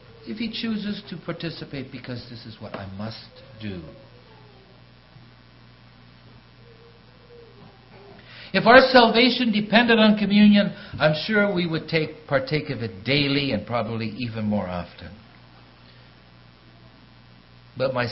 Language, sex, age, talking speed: English, male, 60-79, 115 wpm